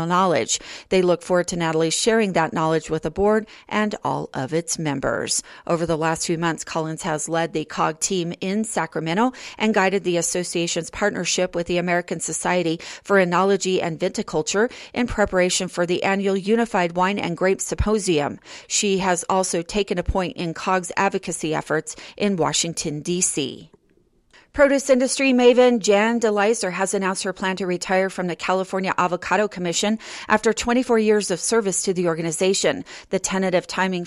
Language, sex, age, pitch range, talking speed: English, female, 40-59, 170-205 Hz, 165 wpm